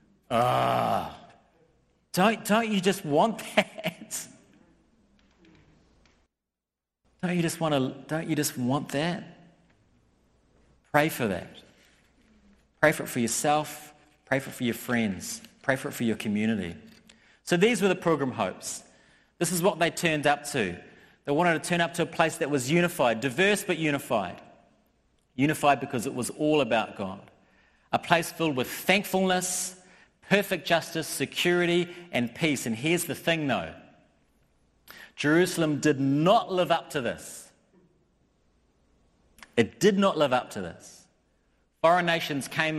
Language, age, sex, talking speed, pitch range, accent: English, 40-59, male, 145 wpm, 125-175 Hz, Australian